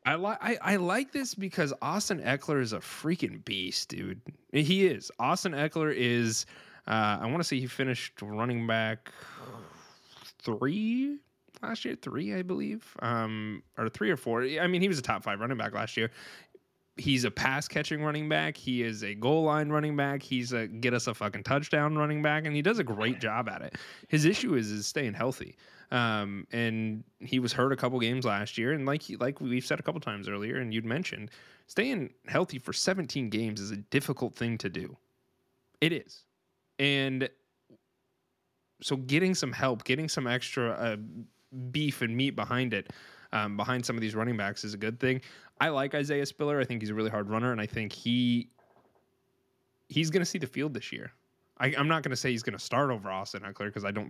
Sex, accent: male, American